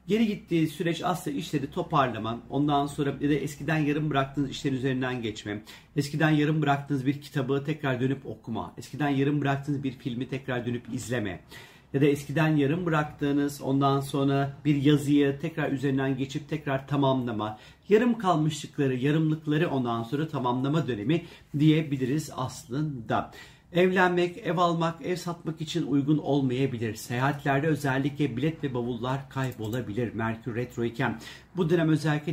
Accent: native